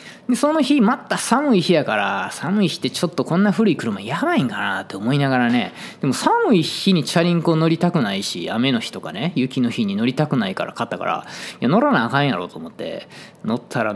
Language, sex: Japanese, male